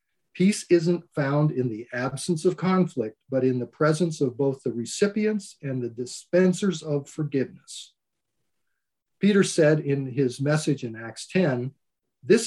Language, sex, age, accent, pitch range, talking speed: English, male, 50-69, American, 125-175 Hz, 145 wpm